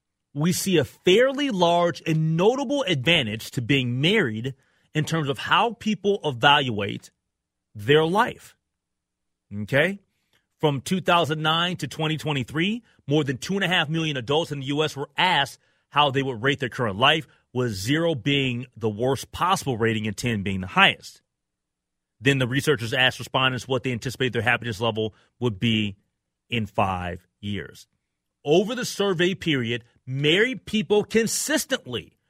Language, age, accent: English, 30-49, American